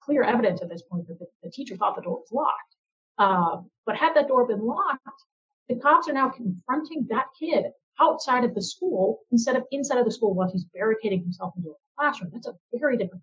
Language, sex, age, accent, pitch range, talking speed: English, female, 30-49, American, 205-295 Hz, 220 wpm